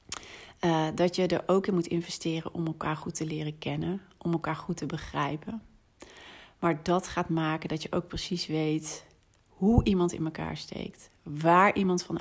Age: 40-59